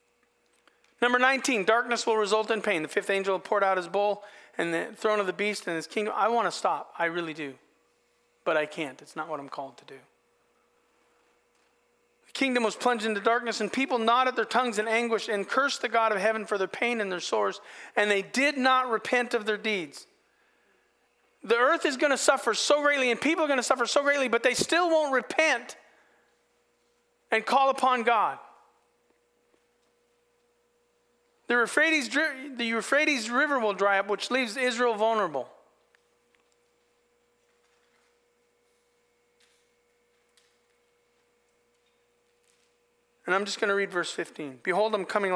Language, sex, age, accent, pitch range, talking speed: English, male, 40-59, American, 170-245 Hz, 160 wpm